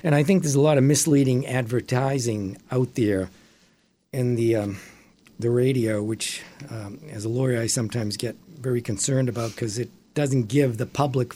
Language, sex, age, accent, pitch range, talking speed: English, male, 60-79, American, 120-155 Hz, 175 wpm